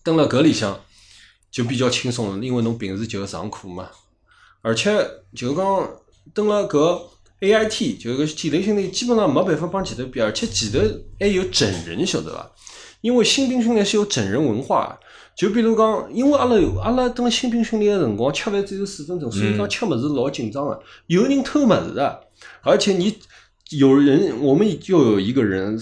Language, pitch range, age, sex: Chinese, 110-175 Hz, 20-39, male